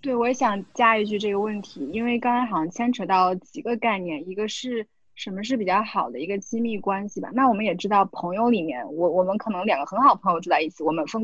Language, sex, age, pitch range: Chinese, female, 20-39, 180-235 Hz